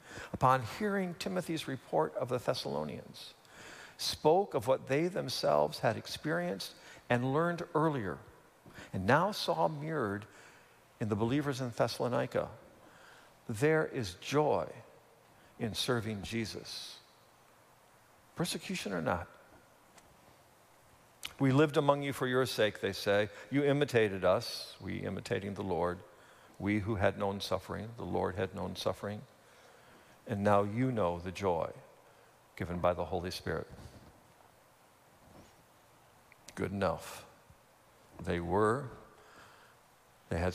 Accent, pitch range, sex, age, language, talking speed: American, 100-145 Hz, male, 50-69, English, 115 wpm